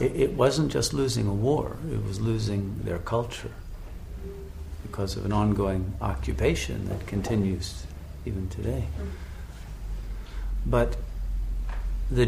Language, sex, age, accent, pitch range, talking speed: English, male, 50-69, American, 95-110 Hz, 110 wpm